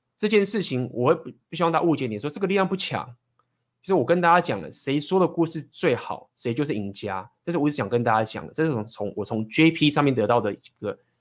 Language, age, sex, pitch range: Chinese, 20-39, male, 115-165 Hz